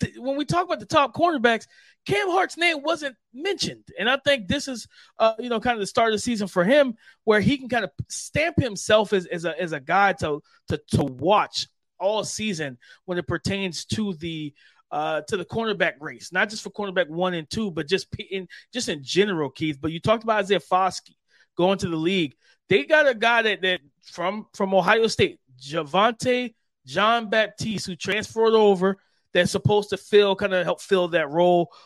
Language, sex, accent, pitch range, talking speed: English, male, American, 165-215 Hz, 205 wpm